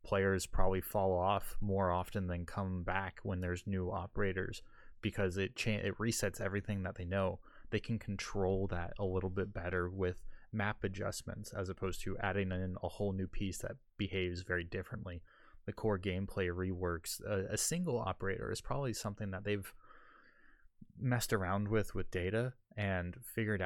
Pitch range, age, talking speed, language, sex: 95-105 Hz, 20-39, 165 wpm, English, male